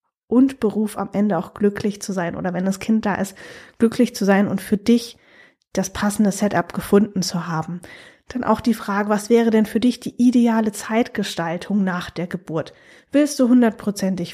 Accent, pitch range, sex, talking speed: German, 195-240 Hz, female, 185 wpm